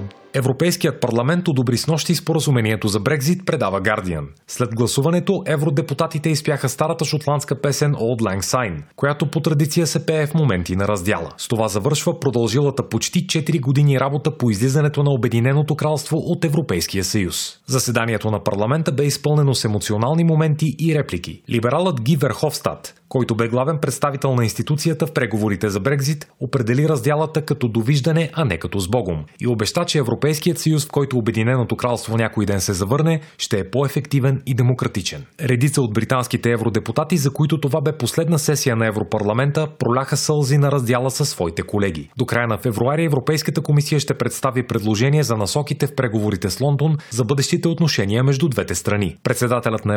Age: 30-49